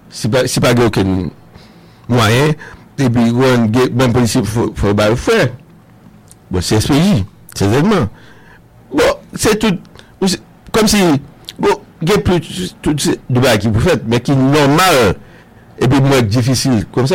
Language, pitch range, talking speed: English, 120-165 Hz, 125 wpm